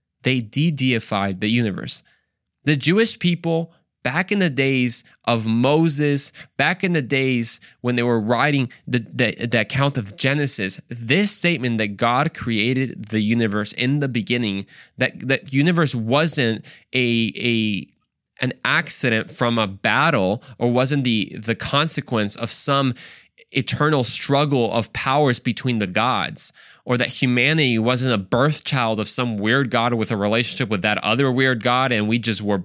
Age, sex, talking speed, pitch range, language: 20-39, male, 155 wpm, 115-150 Hz, English